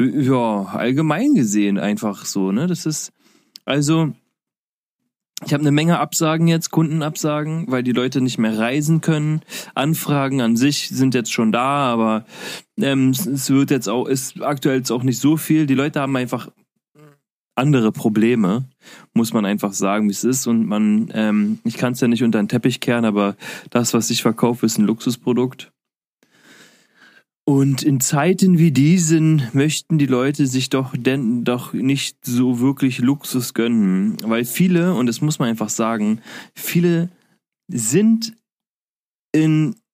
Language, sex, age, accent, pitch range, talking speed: German, male, 30-49, German, 120-165 Hz, 160 wpm